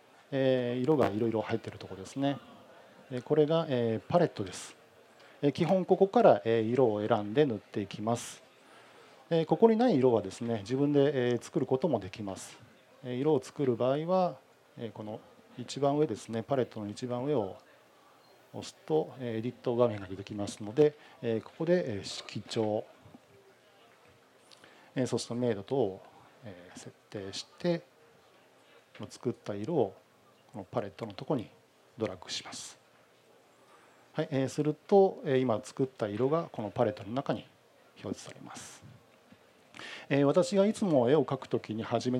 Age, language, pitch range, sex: 40-59, Japanese, 110-145 Hz, male